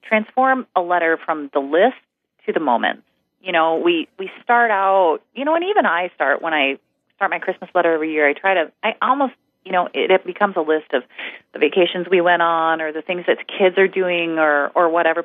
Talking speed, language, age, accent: 225 wpm, English, 30-49, American